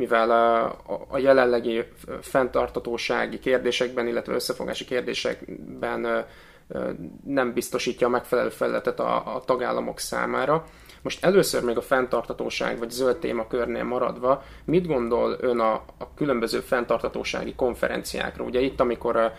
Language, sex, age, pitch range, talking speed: Hungarian, male, 20-39, 120-130 Hz, 110 wpm